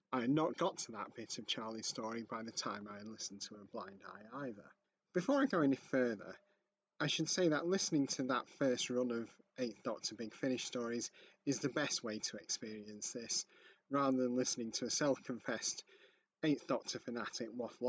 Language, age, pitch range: English, 30-49, 115-145 Hz